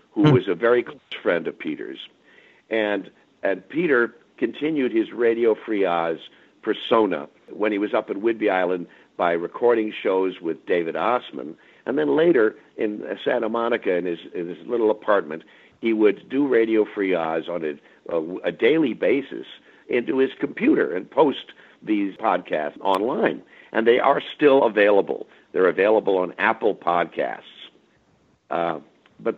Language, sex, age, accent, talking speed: English, male, 60-79, American, 145 wpm